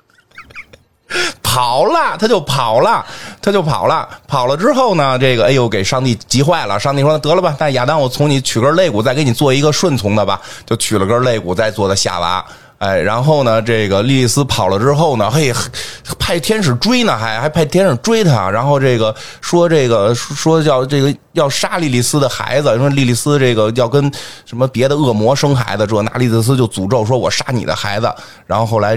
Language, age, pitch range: Chinese, 20-39, 100-130 Hz